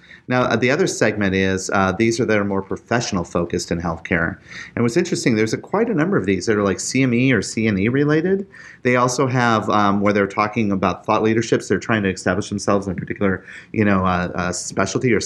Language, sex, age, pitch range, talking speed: English, male, 30-49, 100-125 Hz, 220 wpm